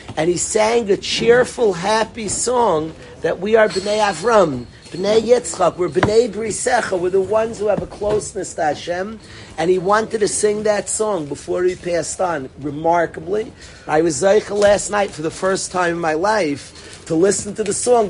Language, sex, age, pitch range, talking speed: English, male, 40-59, 160-210 Hz, 180 wpm